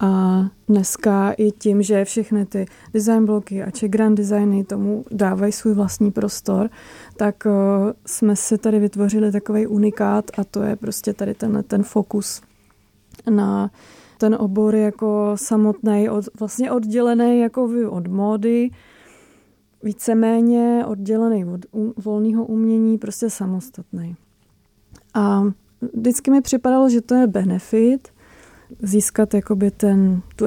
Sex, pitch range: female, 200-220 Hz